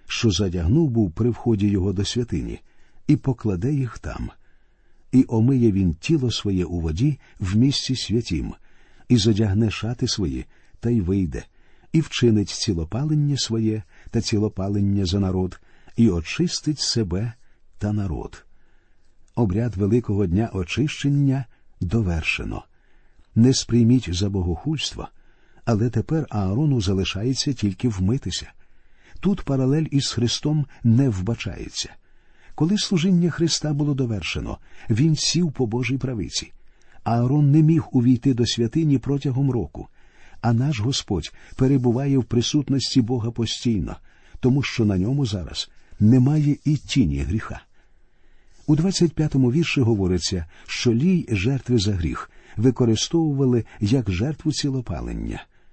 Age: 50-69